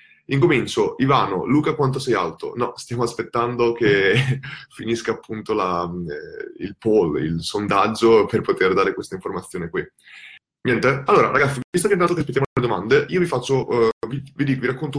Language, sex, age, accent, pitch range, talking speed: Italian, male, 20-39, native, 115-155 Hz, 175 wpm